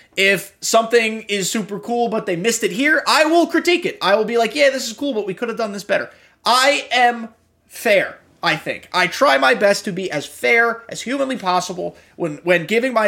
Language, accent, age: English, American, 30-49